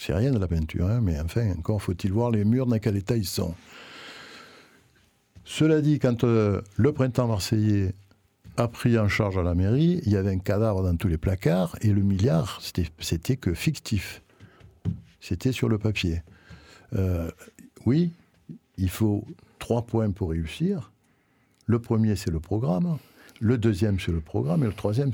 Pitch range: 90-120 Hz